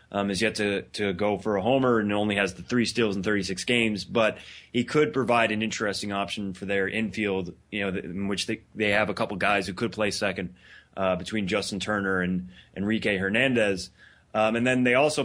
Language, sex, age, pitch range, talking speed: English, male, 20-39, 100-120 Hz, 215 wpm